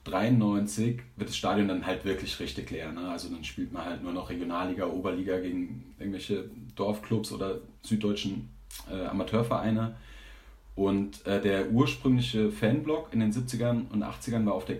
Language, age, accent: German, 30-49, German